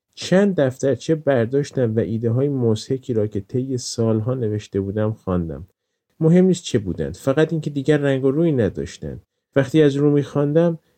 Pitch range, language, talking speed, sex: 100-135 Hz, Persian, 165 wpm, male